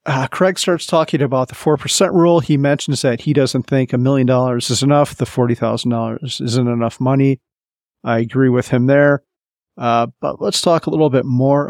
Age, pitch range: 40-59, 125-150 Hz